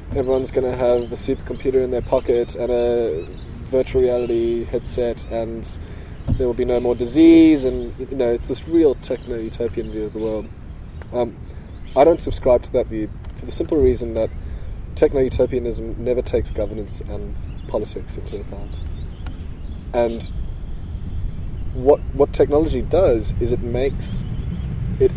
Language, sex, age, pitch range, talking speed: English, male, 20-39, 85-125 Hz, 145 wpm